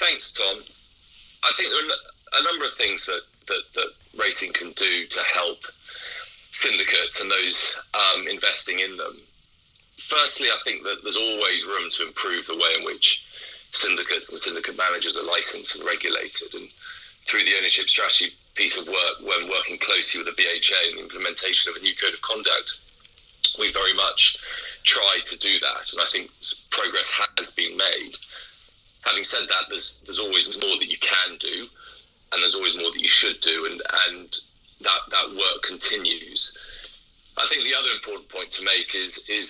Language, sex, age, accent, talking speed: English, male, 30-49, British, 180 wpm